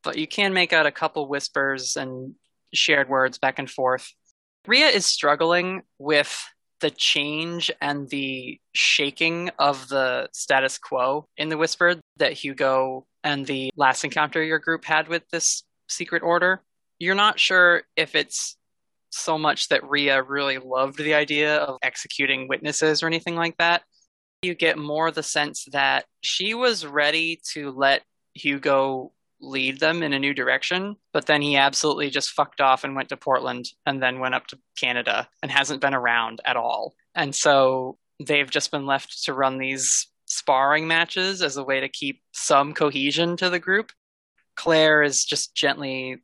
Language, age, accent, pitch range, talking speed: English, 20-39, American, 135-165 Hz, 165 wpm